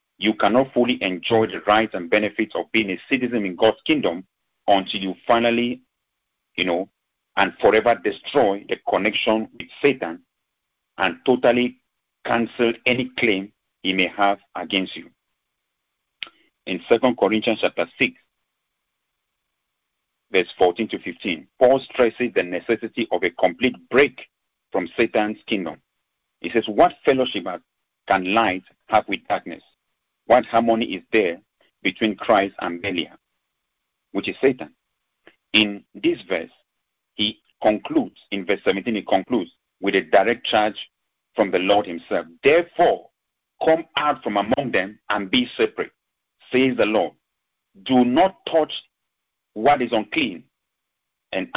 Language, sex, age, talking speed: English, male, 50-69, 135 wpm